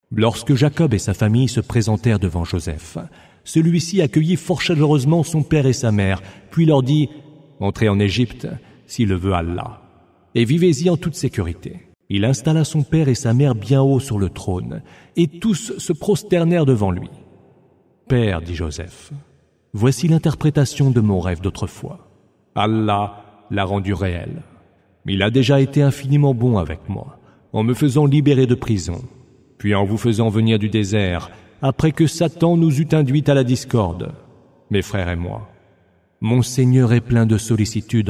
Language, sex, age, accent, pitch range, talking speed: English, male, 40-59, French, 100-140 Hz, 165 wpm